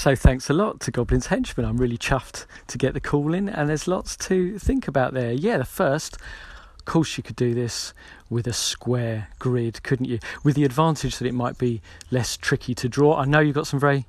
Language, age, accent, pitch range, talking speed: English, 40-59, British, 120-145 Hz, 230 wpm